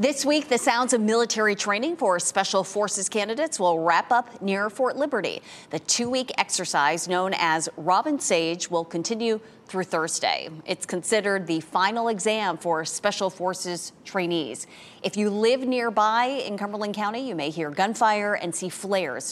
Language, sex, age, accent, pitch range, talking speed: English, female, 30-49, American, 175-225 Hz, 160 wpm